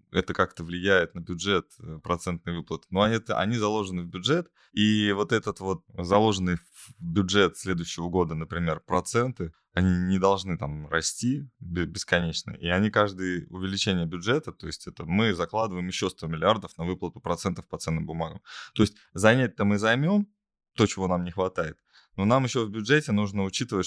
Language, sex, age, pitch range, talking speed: Russian, male, 20-39, 85-110 Hz, 165 wpm